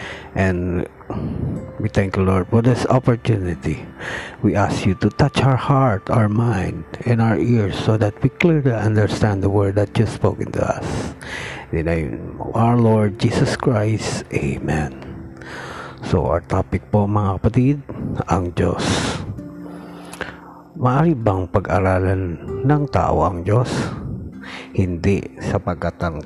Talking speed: 135 wpm